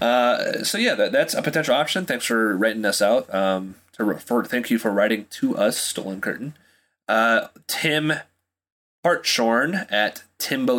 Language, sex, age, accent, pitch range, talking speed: English, male, 30-49, American, 100-140 Hz, 160 wpm